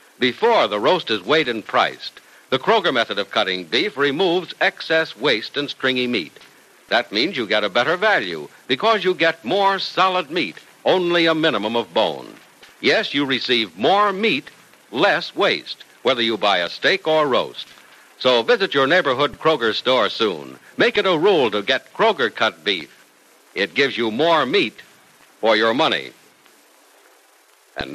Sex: male